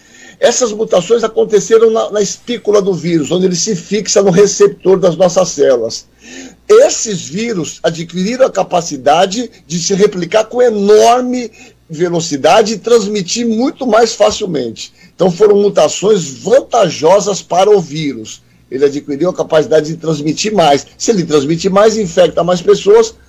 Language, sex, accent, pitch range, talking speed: Portuguese, male, Brazilian, 170-225 Hz, 140 wpm